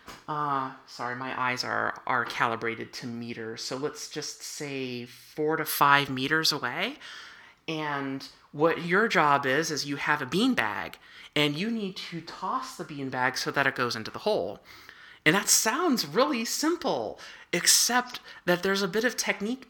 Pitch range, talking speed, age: 140-190 Hz, 170 wpm, 30-49